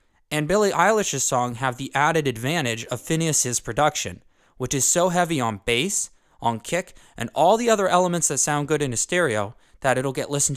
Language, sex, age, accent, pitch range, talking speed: English, male, 20-39, American, 120-175 Hz, 195 wpm